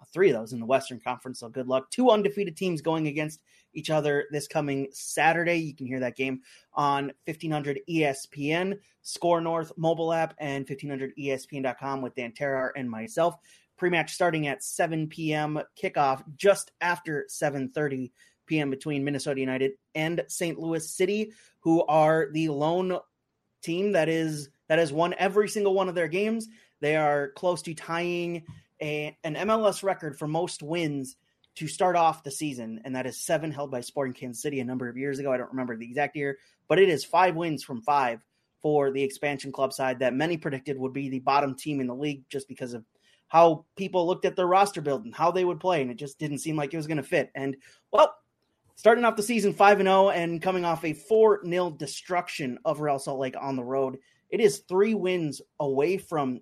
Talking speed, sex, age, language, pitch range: 200 wpm, male, 30-49, English, 135-175 Hz